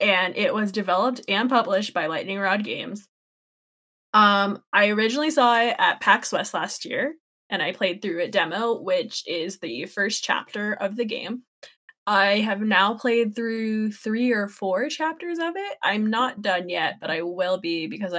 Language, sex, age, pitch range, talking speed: English, female, 10-29, 190-235 Hz, 180 wpm